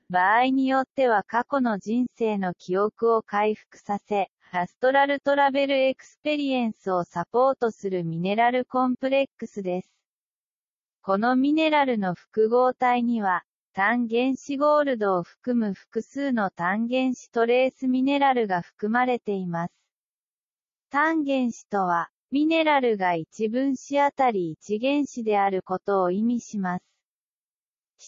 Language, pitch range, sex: English, 195-260 Hz, female